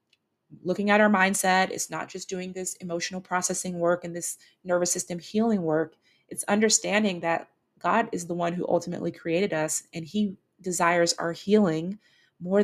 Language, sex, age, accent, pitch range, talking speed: English, female, 30-49, American, 160-195 Hz, 165 wpm